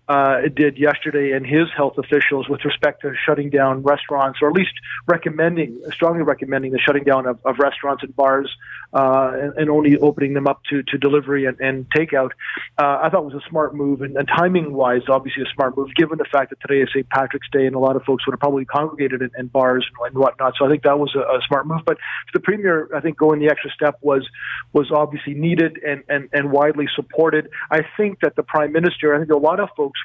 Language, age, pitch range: English, 40-59, 135-150 Hz